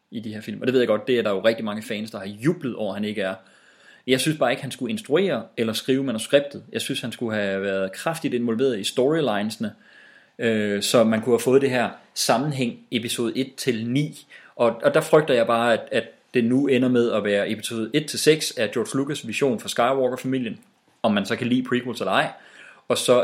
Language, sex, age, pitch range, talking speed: English, male, 30-49, 110-135 Hz, 245 wpm